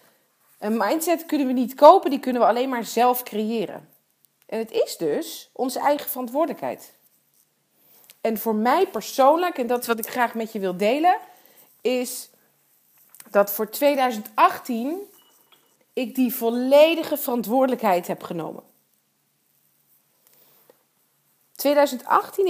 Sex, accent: female, Dutch